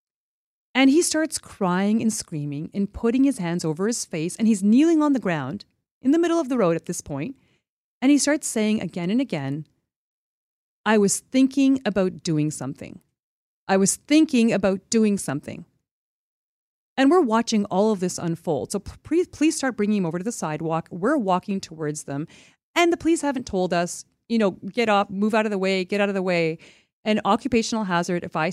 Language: English